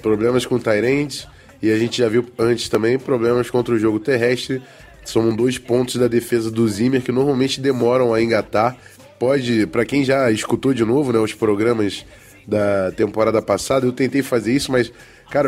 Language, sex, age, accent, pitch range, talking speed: Portuguese, male, 20-39, Brazilian, 115-140 Hz, 180 wpm